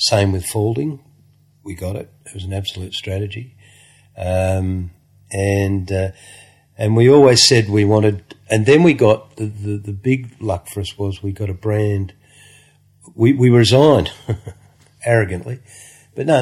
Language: English